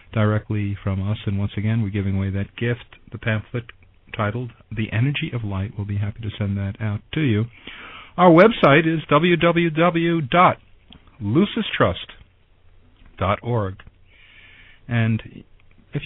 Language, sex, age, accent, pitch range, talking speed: English, male, 50-69, American, 100-120 Hz, 125 wpm